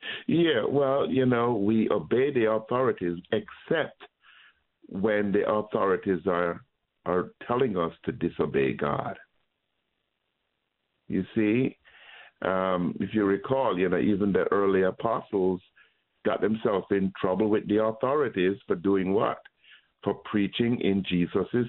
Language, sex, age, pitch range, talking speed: English, male, 60-79, 95-120 Hz, 125 wpm